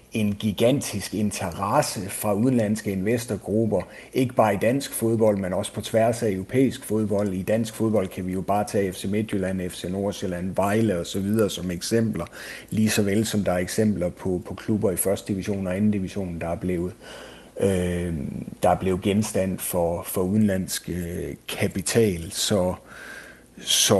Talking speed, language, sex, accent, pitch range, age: 160 wpm, Danish, male, native, 90-110 Hz, 60-79